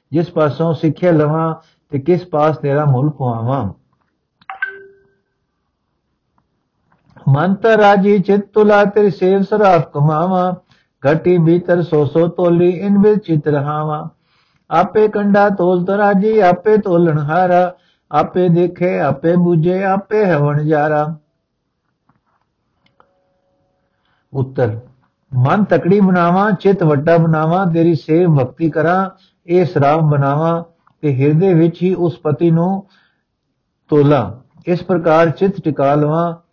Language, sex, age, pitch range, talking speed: Punjabi, male, 60-79, 150-180 Hz, 115 wpm